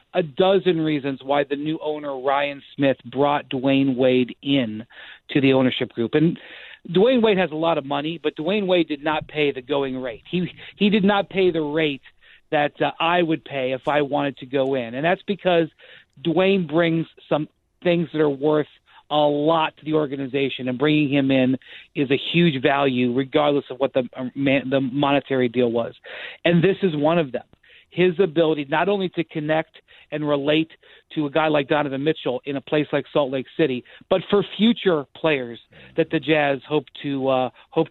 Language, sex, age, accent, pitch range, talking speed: English, male, 40-59, American, 140-165 Hz, 195 wpm